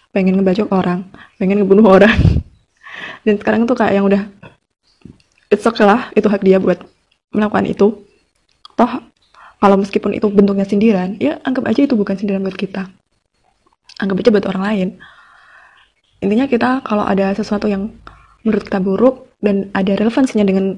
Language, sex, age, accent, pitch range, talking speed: Indonesian, female, 20-39, native, 195-230 Hz, 150 wpm